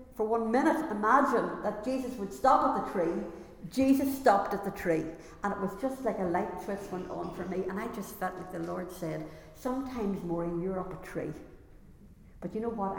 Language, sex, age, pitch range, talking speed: English, female, 60-79, 195-245 Hz, 210 wpm